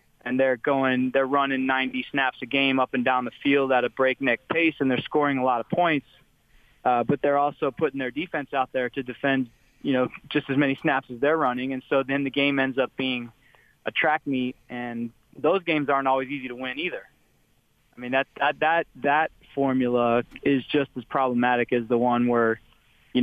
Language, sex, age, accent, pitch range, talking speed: English, male, 20-39, American, 125-145 Hz, 210 wpm